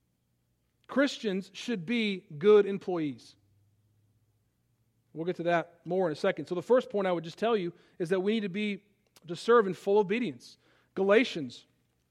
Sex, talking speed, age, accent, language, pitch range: male, 170 wpm, 40-59, American, English, 170-220 Hz